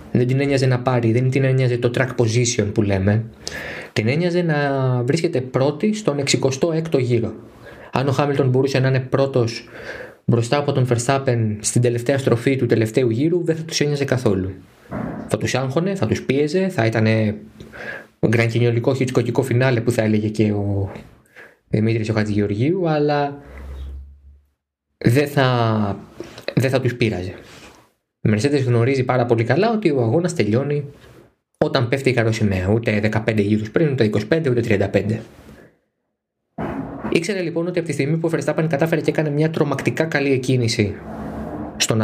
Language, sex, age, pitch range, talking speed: Greek, male, 20-39, 110-145 Hz, 150 wpm